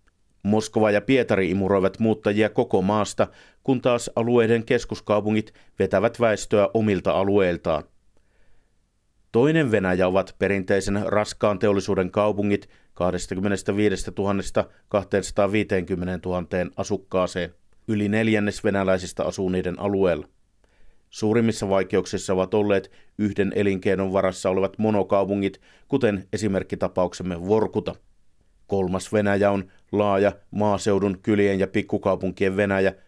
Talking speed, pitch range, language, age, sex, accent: 95 wpm, 95-105 Hz, Finnish, 50-69, male, native